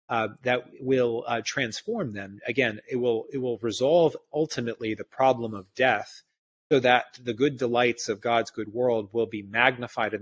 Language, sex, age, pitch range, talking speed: English, male, 30-49, 105-130 Hz, 175 wpm